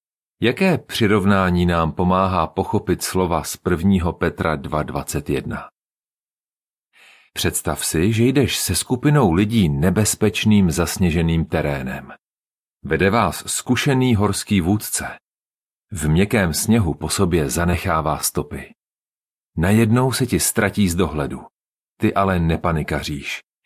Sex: male